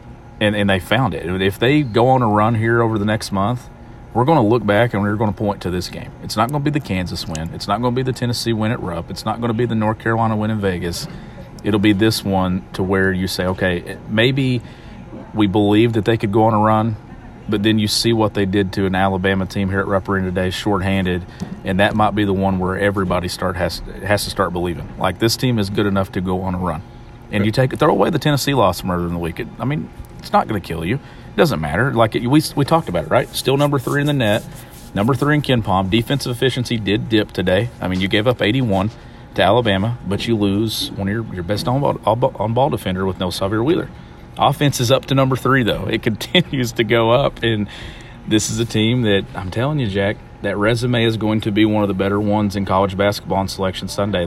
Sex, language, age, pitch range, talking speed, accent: male, English, 40-59, 95-120 Hz, 255 wpm, American